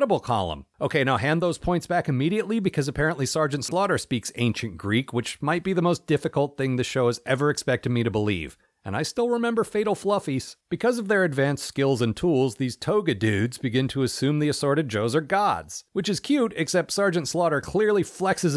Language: English